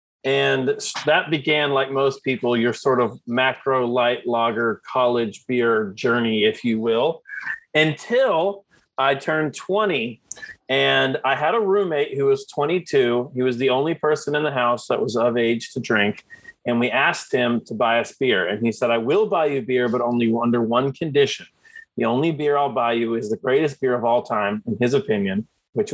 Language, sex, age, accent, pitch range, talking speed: English, male, 30-49, American, 120-165 Hz, 190 wpm